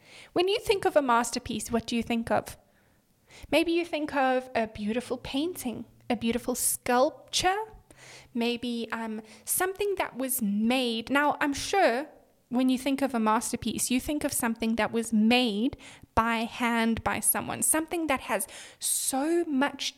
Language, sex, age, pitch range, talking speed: English, female, 10-29, 235-310 Hz, 155 wpm